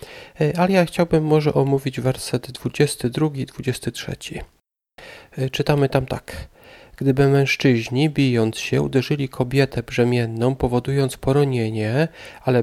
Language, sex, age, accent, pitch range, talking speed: Polish, male, 40-59, native, 130-150 Hz, 95 wpm